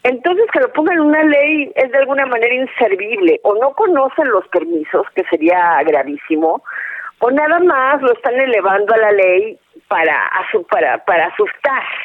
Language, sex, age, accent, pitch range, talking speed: Spanish, female, 40-59, Mexican, 225-345 Hz, 175 wpm